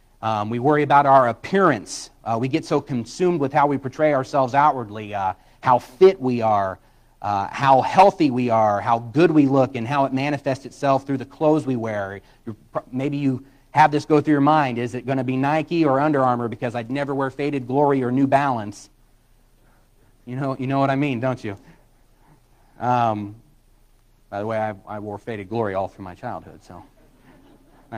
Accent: American